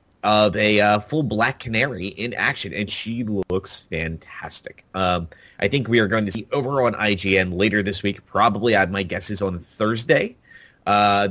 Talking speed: 185 wpm